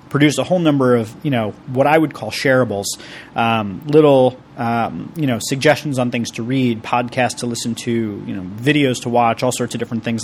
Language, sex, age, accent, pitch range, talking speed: English, male, 30-49, American, 120-145 Hz, 210 wpm